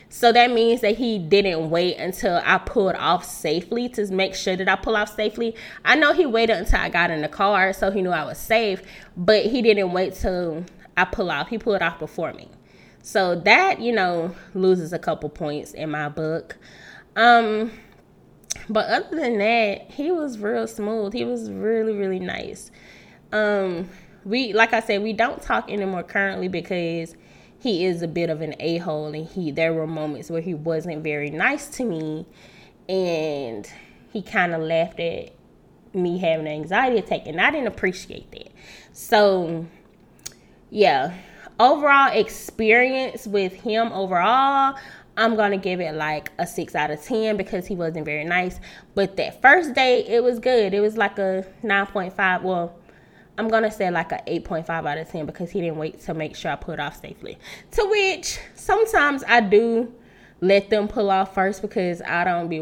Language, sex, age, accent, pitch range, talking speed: English, female, 20-39, American, 170-225 Hz, 180 wpm